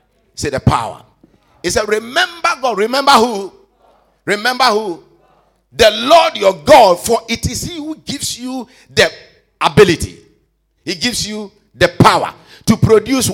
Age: 50-69